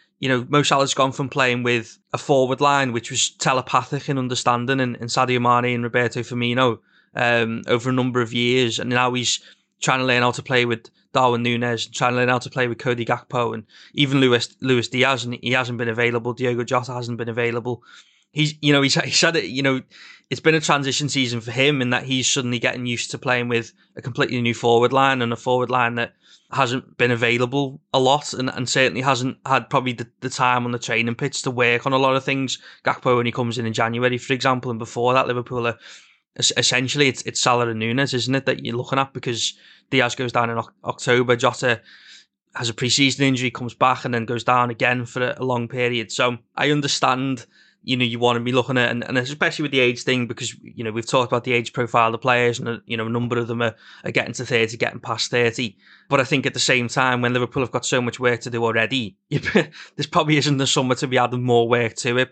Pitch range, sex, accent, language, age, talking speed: 120-130 Hz, male, British, English, 20-39, 240 wpm